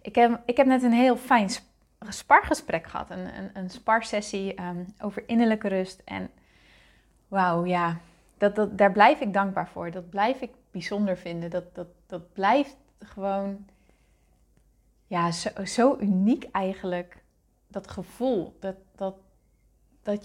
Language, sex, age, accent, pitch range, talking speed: Dutch, female, 20-39, Dutch, 190-225 Hz, 140 wpm